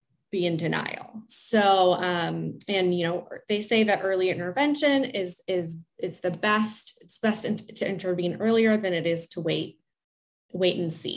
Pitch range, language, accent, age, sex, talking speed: 180-240 Hz, English, American, 20-39, female, 165 wpm